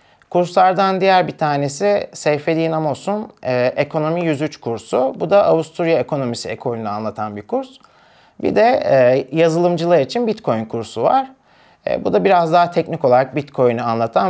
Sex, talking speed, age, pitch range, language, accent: male, 145 wpm, 40-59, 125-185 Hz, Turkish, native